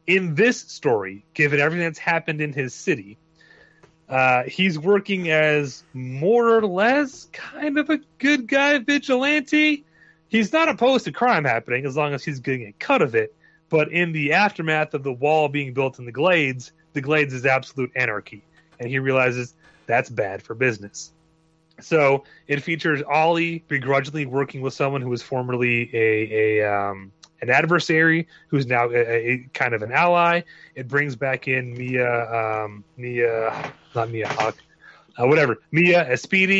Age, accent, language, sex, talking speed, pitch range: 30-49, American, English, male, 165 wpm, 125-165 Hz